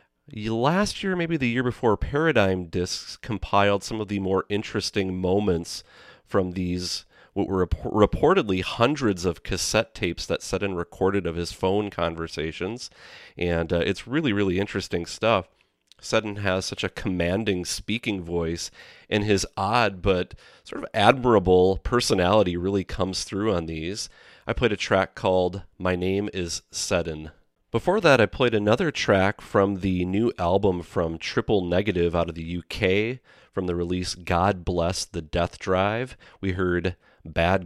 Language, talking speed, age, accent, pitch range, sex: English, 150 wpm, 30-49, American, 85-100 Hz, male